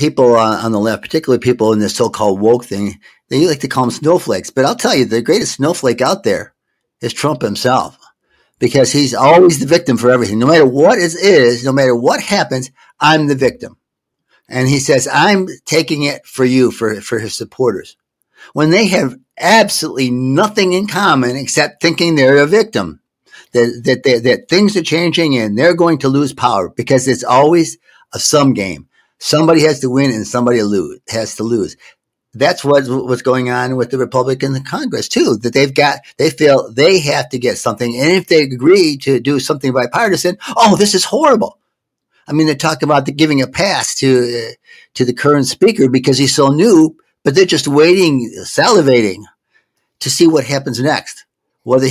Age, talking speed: 60-79, 185 wpm